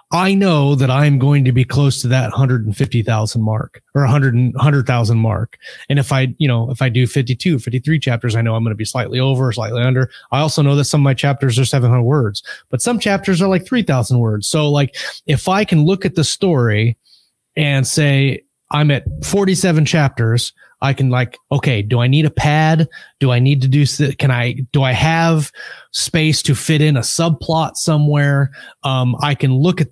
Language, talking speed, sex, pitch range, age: English, 205 wpm, male, 125-150 Hz, 30-49